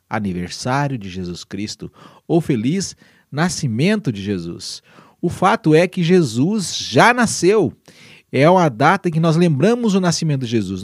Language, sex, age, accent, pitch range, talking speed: Portuguese, male, 40-59, Brazilian, 120-175 Hz, 150 wpm